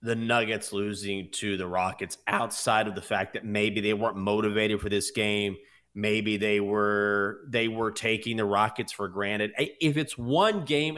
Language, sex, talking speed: English, male, 175 wpm